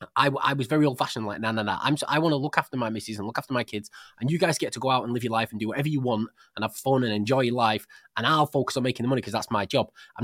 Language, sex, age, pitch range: English, male, 20-39, 110-140 Hz